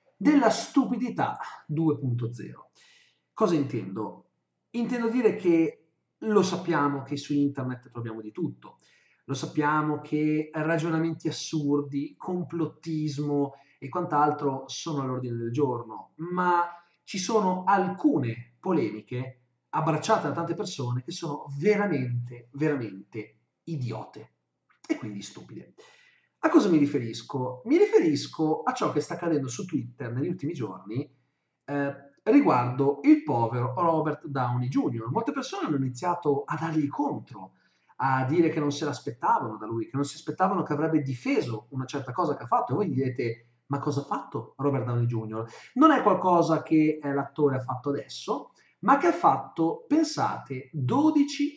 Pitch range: 130-170 Hz